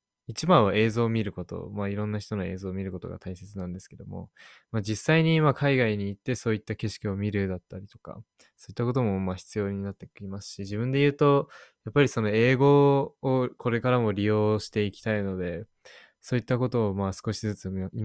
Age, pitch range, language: 20-39, 95-120 Hz, Japanese